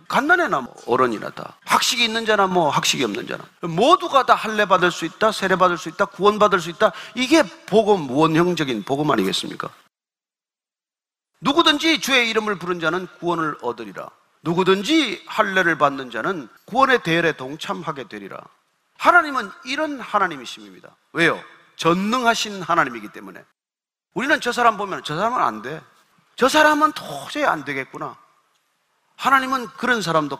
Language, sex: Korean, male